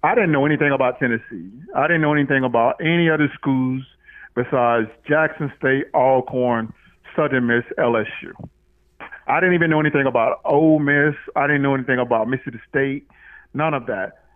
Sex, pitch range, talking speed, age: male, 130-165 Hz, 165 wpm, 40-59